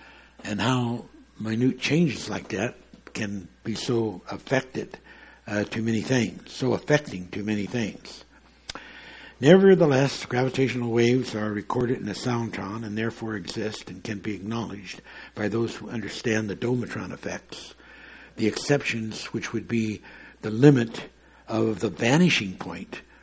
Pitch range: 105-120 Hz